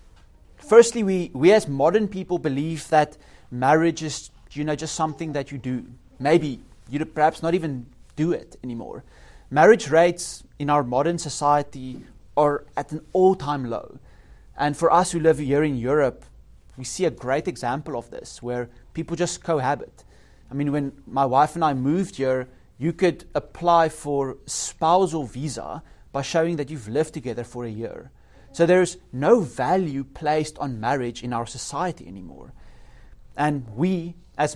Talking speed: 160 wpm